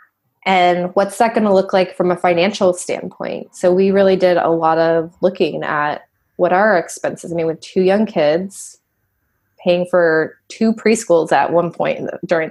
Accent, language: American, English